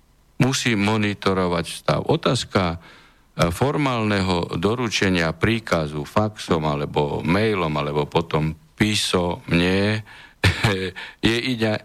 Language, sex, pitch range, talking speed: Slovak, male, 85-105 Hz, 70 wpm